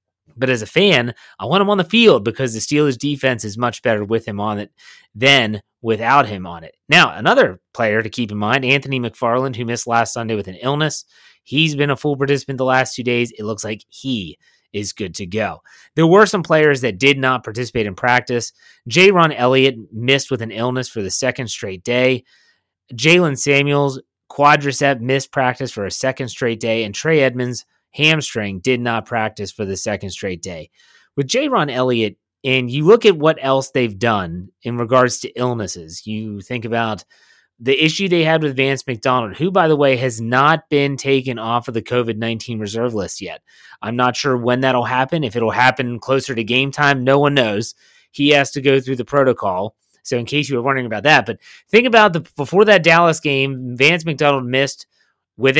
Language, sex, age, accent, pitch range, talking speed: English, male, 30-49, American, 115-140 Hz, 205 wpm